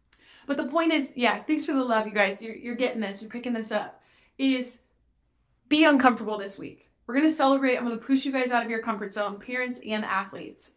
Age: 20-39